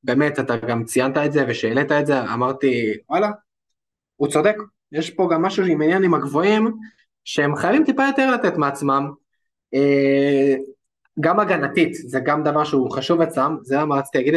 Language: Hebrew